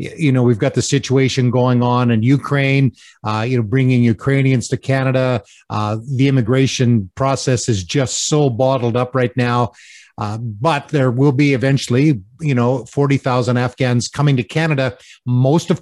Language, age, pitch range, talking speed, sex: English, 50-69, 125-145 Hz, 165 wpm, male